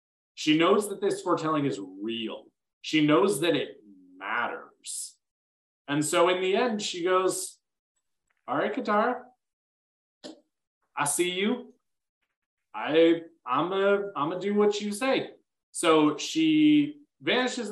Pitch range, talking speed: 140-195 Hz, 120 wpm